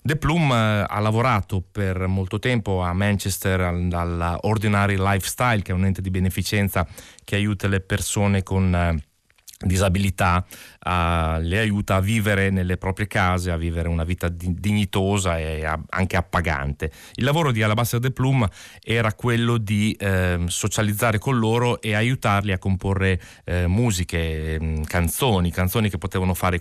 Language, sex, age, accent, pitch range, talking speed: Italian, male, 30-49, native, 85-105 Hz, 155 wpm